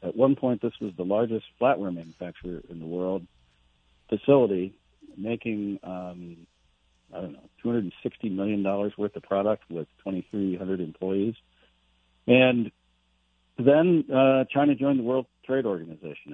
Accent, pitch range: American, 85-110 Hz